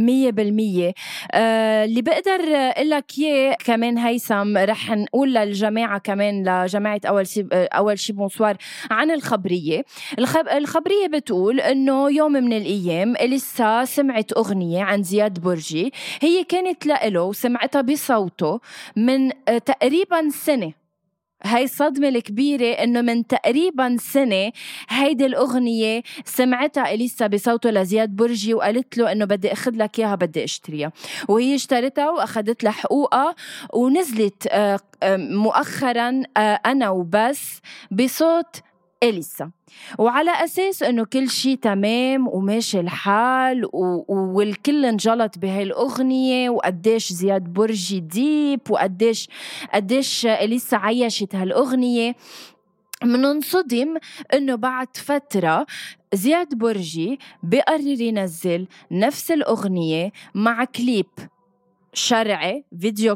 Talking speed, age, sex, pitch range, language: 105 wpm, 20-39, female, 200-265 Hz, Arabic